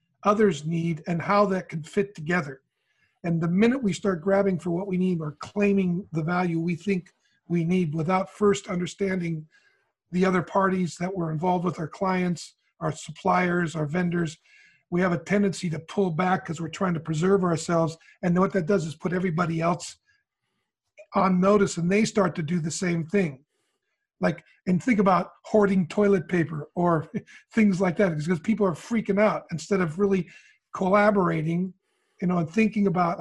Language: English